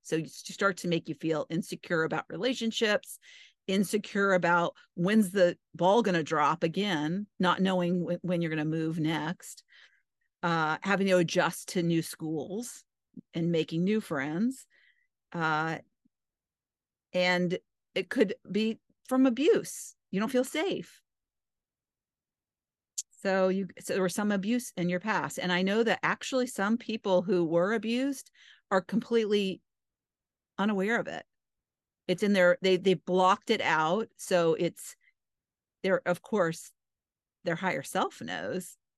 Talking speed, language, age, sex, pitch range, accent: 140 wpm, English, 50-69, female, 170-215 Hz, American